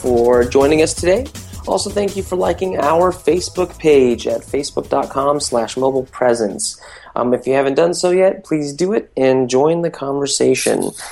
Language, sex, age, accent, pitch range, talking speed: English, male, 20-39, American, 105-135 Hz, 160 wpm